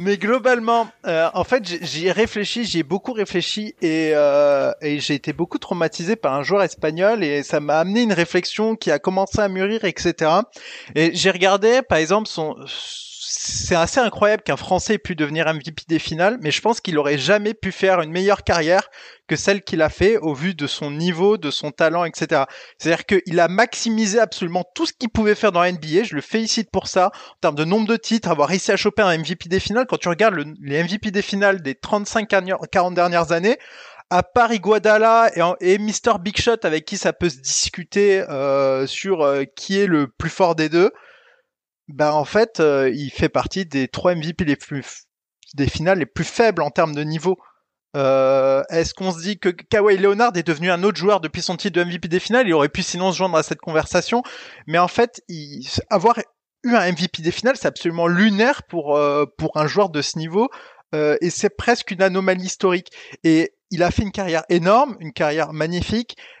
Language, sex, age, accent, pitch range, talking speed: French, male, 20-39, French, 160-210 Hz, 210 wpm